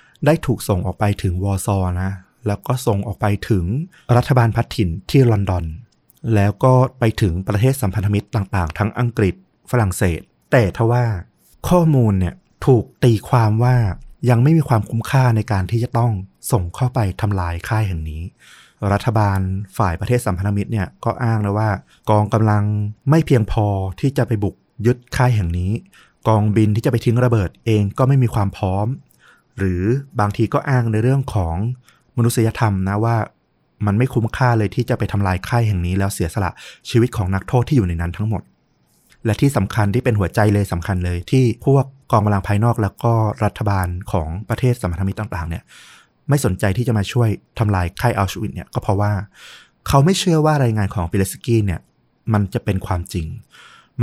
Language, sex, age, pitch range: Thai, male, 30-49, 100-120 Hz